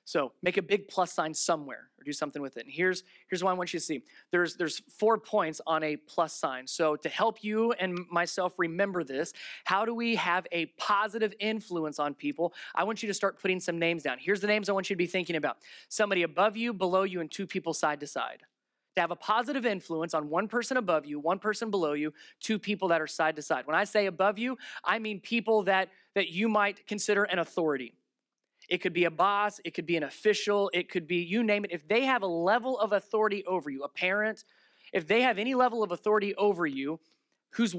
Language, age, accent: English, 20-39, American